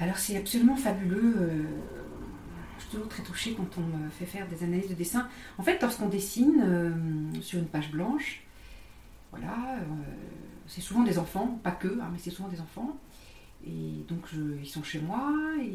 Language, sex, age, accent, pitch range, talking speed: French, female, 40-59, French, 160-205 Hz, 180 wpm